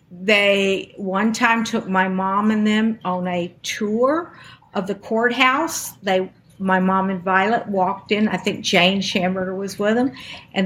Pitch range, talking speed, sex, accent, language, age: 185-225 Hz, 165 wpm, female, American, English, 50-69